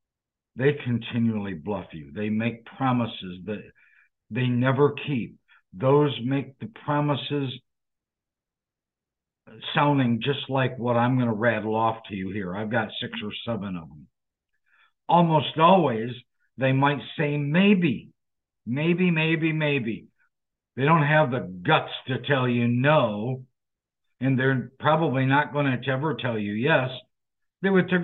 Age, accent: 60-79, American